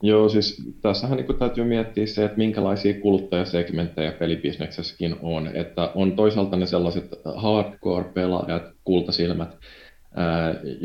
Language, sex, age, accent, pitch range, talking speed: Finnish, male, 20-39, native, 80-90 Hz, 115 wpm